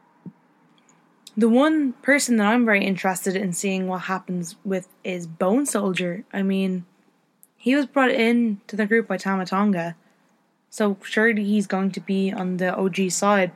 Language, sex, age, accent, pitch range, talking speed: English, female, 10-29, Irish, 190-230 Hz, 165 wpm